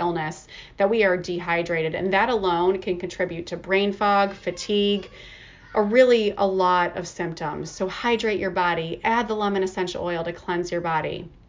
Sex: female